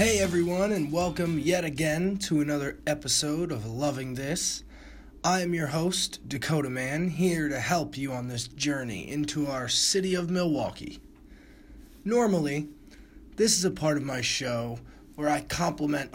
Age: 20-39